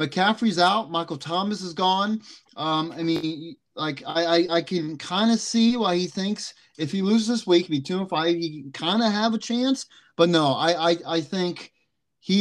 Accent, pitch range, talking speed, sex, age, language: American, 135-175 Hz, 210 wpm, male, 30-49, English